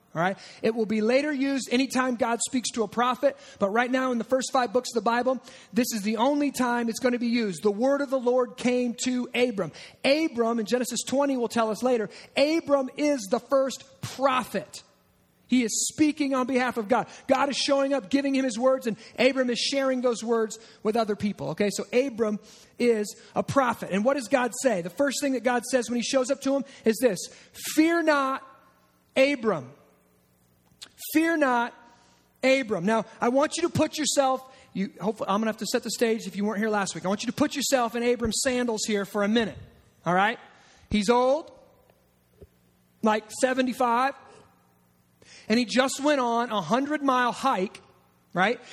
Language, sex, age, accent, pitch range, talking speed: English, male, 30-49, American, 220-270 Hz, 200 wpm